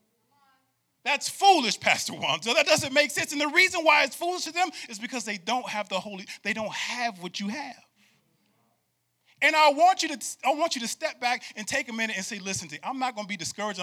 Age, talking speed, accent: 30-49, 240 wpm, American